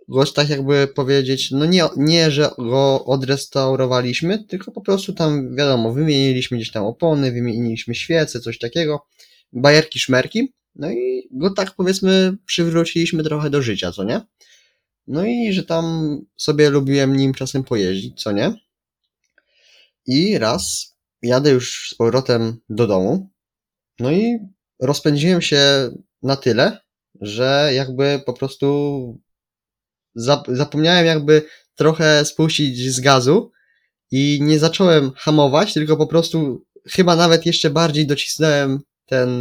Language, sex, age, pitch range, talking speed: Polish, male, 20-39, 125-165 Hz, 130 wpm